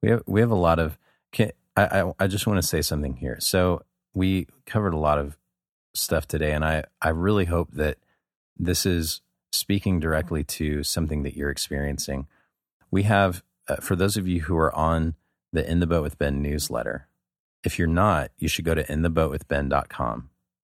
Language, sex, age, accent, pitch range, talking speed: English, male, 30-49, American, 75-90 Hz, 190 wpm